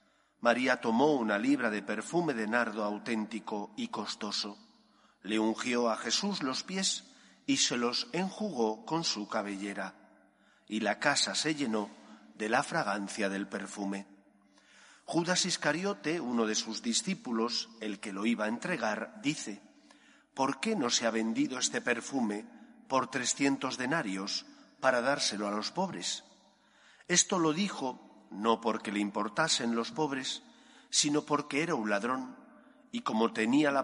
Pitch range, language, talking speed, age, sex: 105-170 Hz, Spanish, 145 wpm, 40-59, male